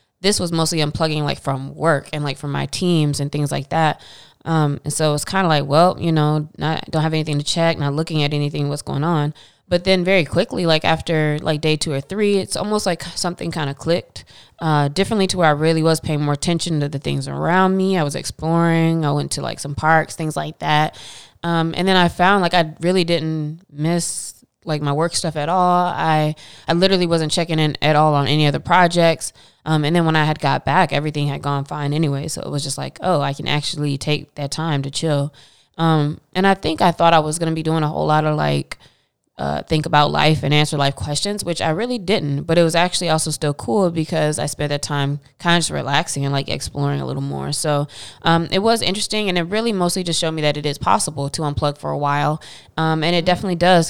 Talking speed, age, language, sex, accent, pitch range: 240 wpm, 20-39, English, female, American, 145-170 Hz